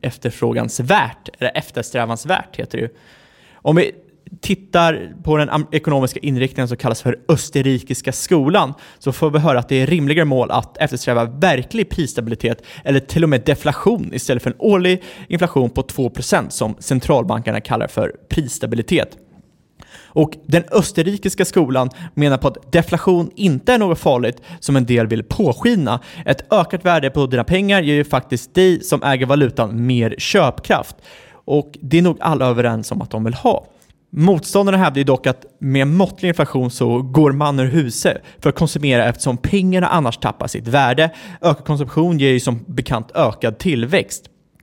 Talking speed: 165 wpm